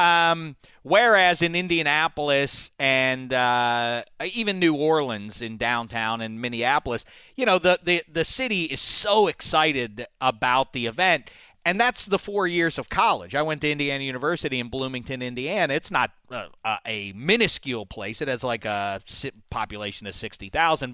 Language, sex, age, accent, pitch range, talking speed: English, male, 40-59, American, 120-165 Hz, 150 wpm